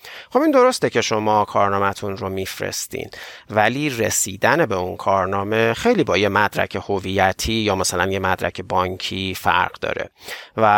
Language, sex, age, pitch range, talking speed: Persian, male, 40-59, 105-175 Hz, 145 wpm